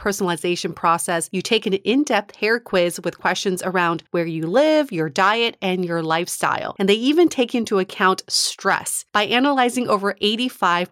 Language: English